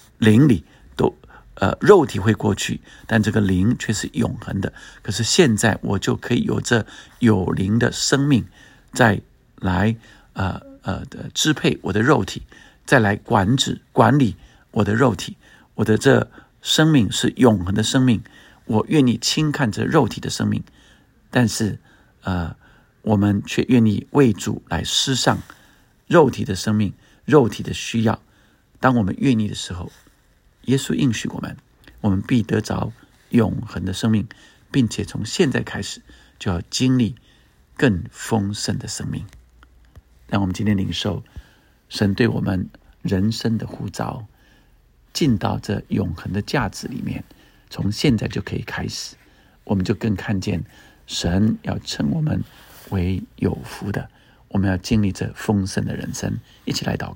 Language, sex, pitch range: Chinese, male, 100-125 Hz